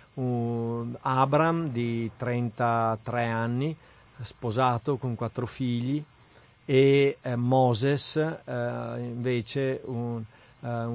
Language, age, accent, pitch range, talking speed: Italian, 40-59, native, 120-135 Hz, 80 wpm